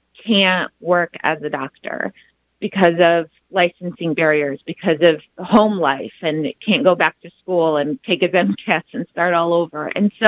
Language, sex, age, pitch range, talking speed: Arabic, female, 30-49, 165-205 Hz, 175 wpm